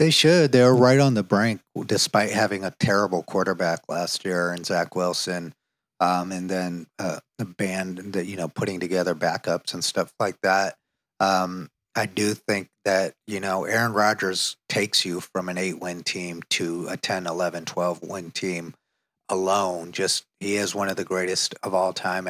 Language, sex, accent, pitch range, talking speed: English, male, American, 90-105 Hz, 180 wpm